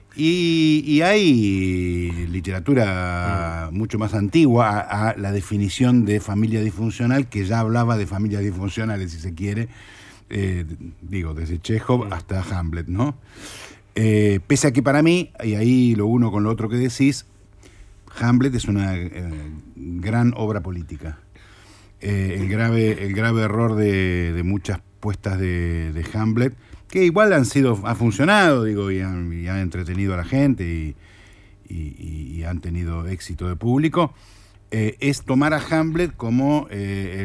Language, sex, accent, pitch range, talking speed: Spanish, male, Argentinian, 95-115 Hz, 150 wpm